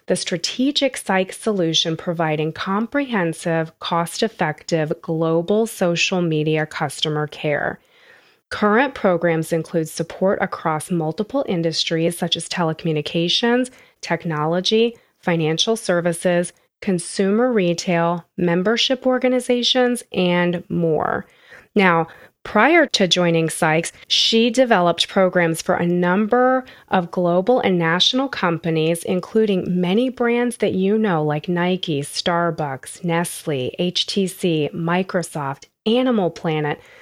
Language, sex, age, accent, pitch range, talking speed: English, female, 30-49, American, 165-210 Hz, 100 wpm